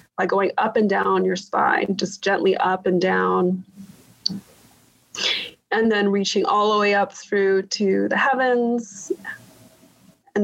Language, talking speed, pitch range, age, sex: English, 140 wpm, 190-215 Hz, 30-49, female